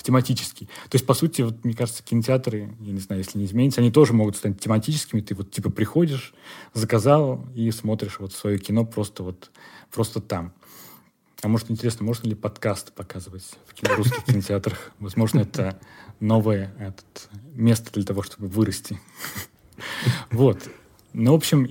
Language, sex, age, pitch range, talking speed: Russian, male, 20-39, 105-130 Hz, 160 wpm